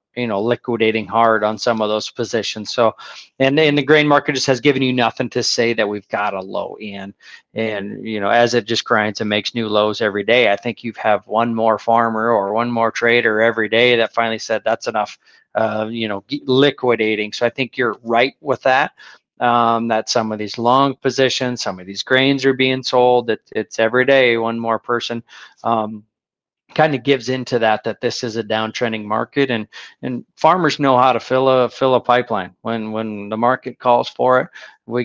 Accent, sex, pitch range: American, male, 110-125 Hz